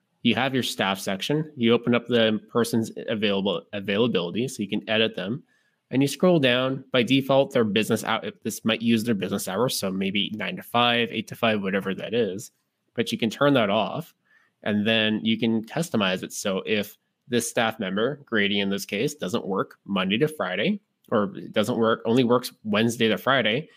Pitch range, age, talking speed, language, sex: 105-135 Hz, 20-39, 195 wpm, English, male